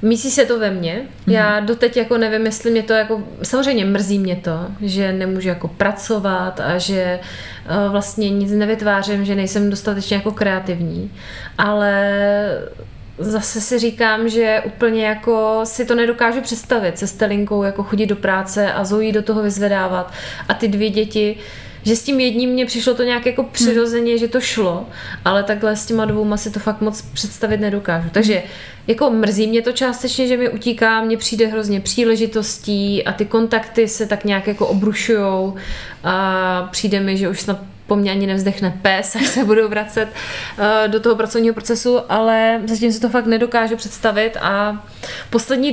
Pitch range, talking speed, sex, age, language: 200-230 Hz, 170 wpm, female, 20-39, Czech